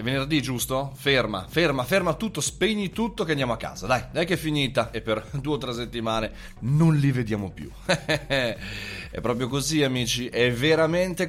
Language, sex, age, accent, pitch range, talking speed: Italian, male, 30-49, native, 110-155 Hz, 175 wpm